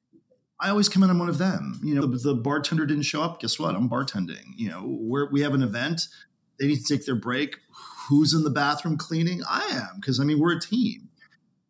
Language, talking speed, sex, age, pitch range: English, 235 wpm, male, 40-59, 130-170 Hz